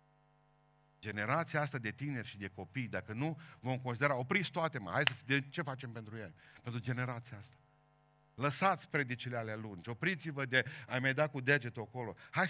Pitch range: 125-150 Hz